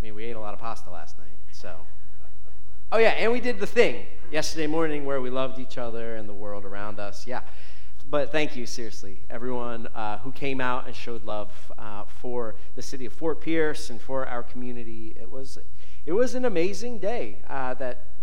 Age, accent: 30-49, American